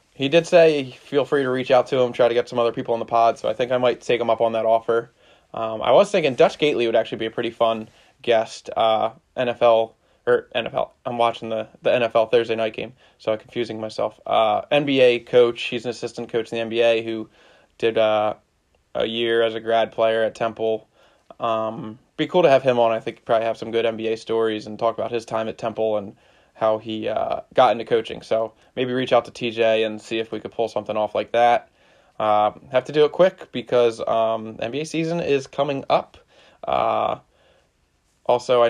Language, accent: English, American